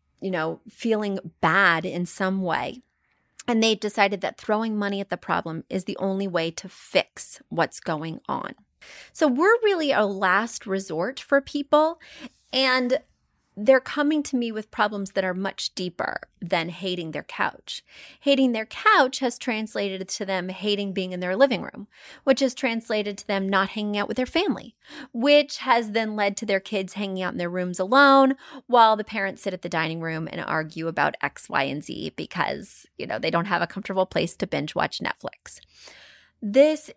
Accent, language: American, English